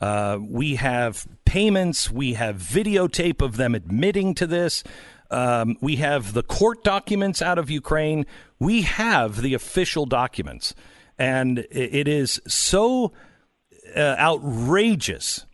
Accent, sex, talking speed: American, male, 125 wpm